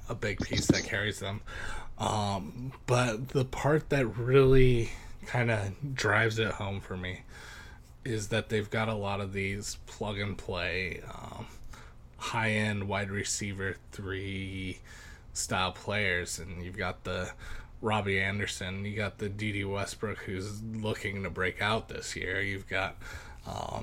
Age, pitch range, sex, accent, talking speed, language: 20-39, 95-120 Hz, male, American, 135 wpm, English